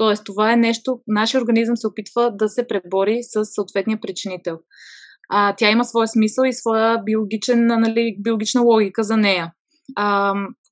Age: 20-39